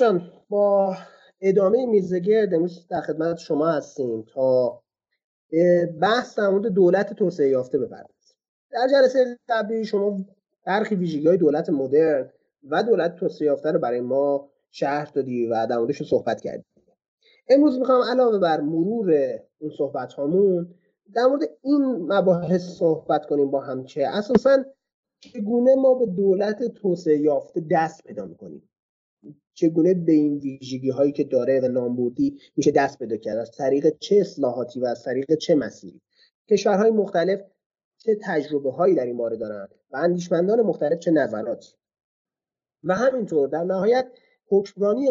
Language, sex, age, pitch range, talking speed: Persian, male, 30-49, 150-225 Hz, 135 wpm